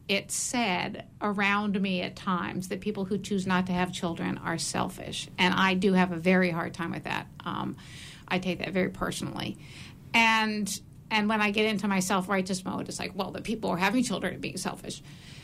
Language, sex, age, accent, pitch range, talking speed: English, female, 50-69, American, 185-215 Hz, 205 wpm